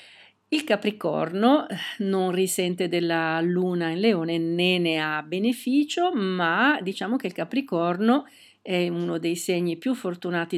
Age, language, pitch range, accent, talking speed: 50-69, Italian, 175-220 Hz, native, 130 wpm